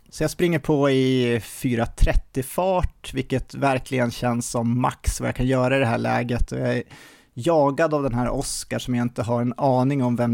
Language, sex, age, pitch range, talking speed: Swedish, male, 30-49, 120-155 Hz, 195 wpm